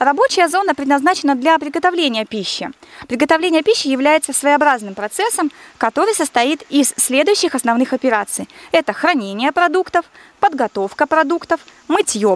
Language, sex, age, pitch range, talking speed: Russian, female, 20-39, 245-335 Hz, 110 wpm